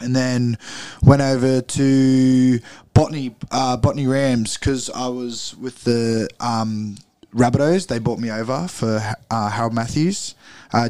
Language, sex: English, male